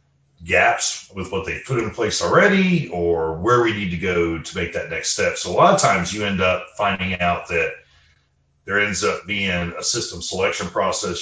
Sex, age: male, 40-59